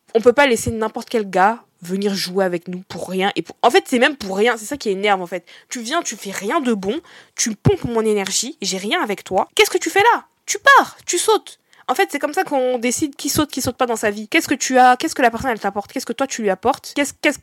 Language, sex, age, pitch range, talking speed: French, female, 20-39, 195-275 Hz, 295 wpm